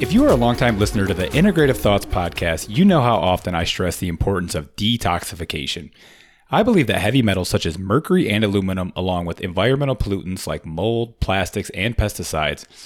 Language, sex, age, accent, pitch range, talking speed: English, male, 30-49, American, 90-115 Hz, 185 wpm